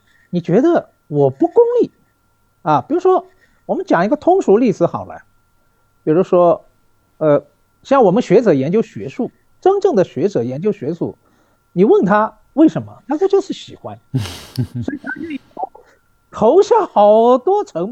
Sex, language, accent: male, Chinese, native